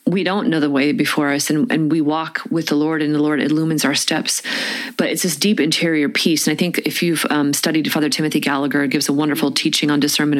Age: 30-49